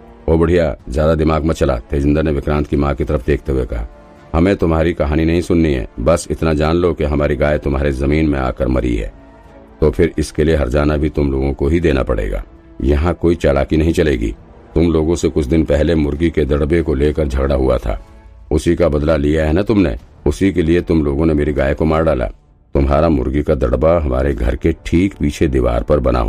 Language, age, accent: Hindi, 50-69, native